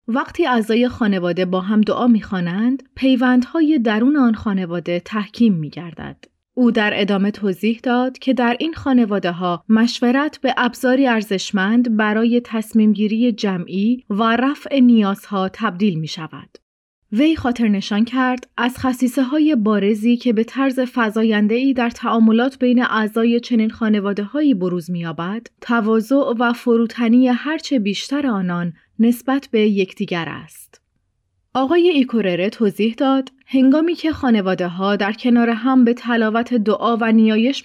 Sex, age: female, 30-49